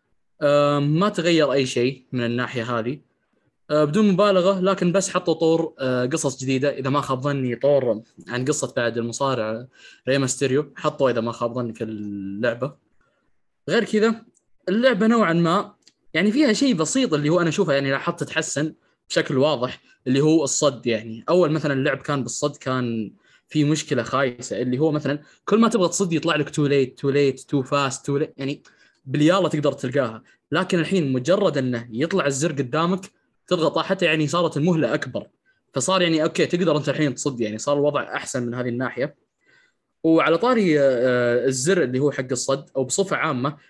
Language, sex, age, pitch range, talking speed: Arabic, male, 20-39, 130-170 Hz, 170 wpm